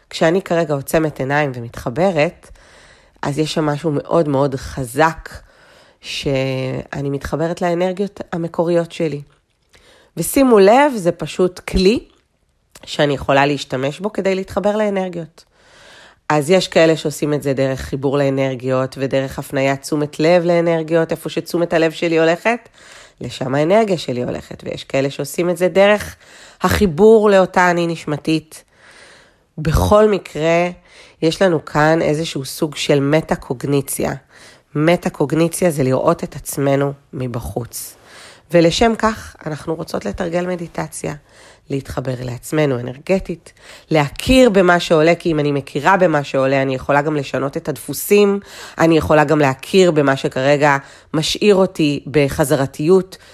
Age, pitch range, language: 30-49, 140-180 Hz, Hebrew